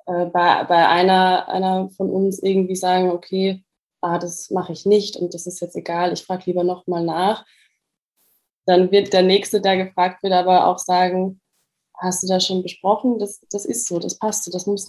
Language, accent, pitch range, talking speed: German, German, 180-195 Hz, 195 wpm